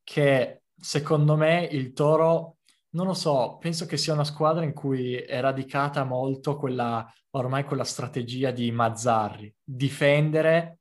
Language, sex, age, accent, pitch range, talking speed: Italian, male, 20-39, native, 125-150 Hz, 140 wpm